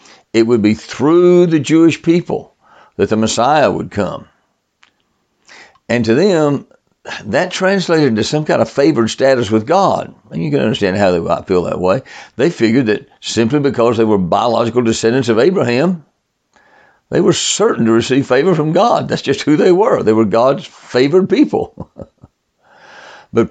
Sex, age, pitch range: male, 60-79, 110-150 Hz